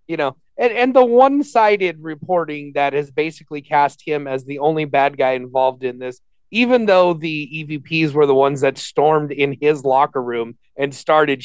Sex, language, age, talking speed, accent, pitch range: male, English, 30-49, 190 wpm, American, 130-155 Hz